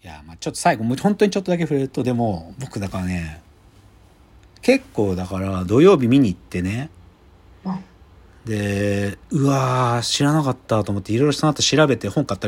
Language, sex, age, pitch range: Japanese, male, 40-59, 95-155 Hz